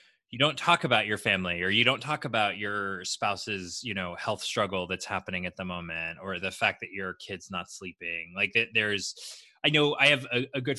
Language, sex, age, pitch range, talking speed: English, male, 20-39, 95-125 Hz, 215 wpm